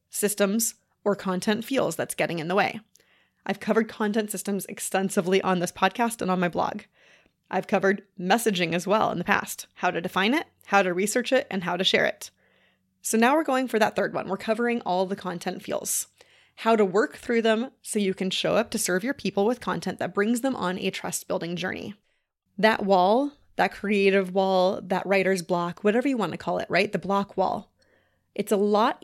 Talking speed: 205 wpm